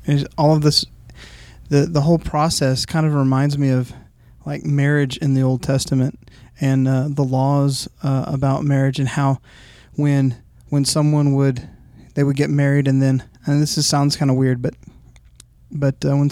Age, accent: 30-49, American